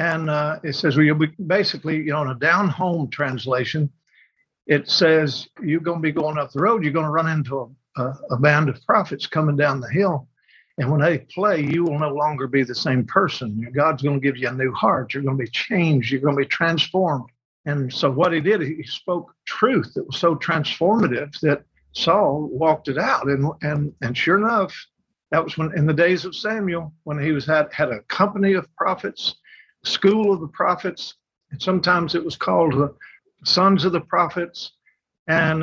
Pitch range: 140-180 Hz